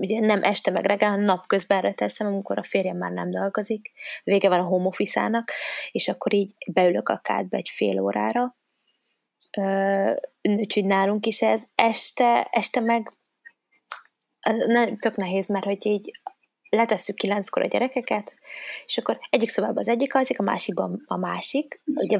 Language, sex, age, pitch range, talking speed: Hungarian, female, 20-39, 195-235 Hz, 155 wpm